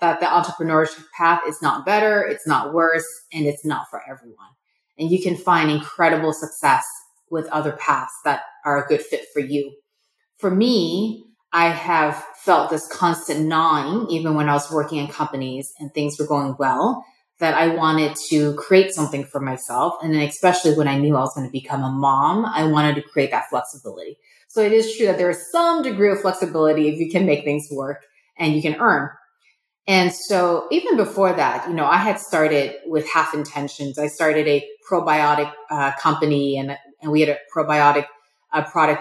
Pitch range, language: 150-185 Hz, English